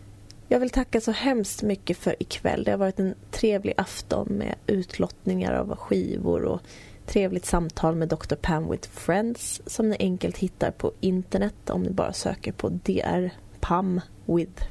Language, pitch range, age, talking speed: Swedish, 165-210 Hz, 20-39, 165 wpm